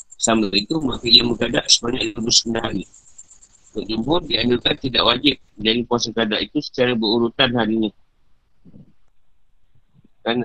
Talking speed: 115 wpm